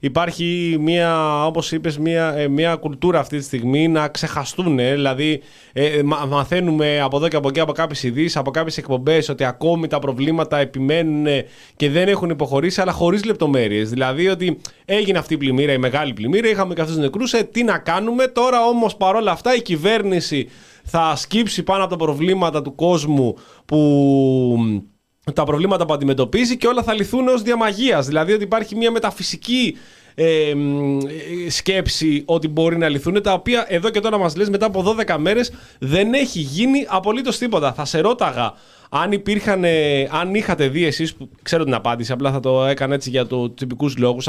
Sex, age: male, 20-39